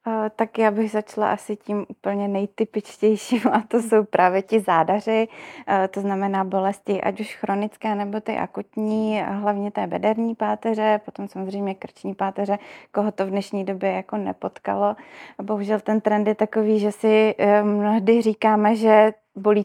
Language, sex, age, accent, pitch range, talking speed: Czech, female, 20-39, native, 205-220 Hz, 160 wpm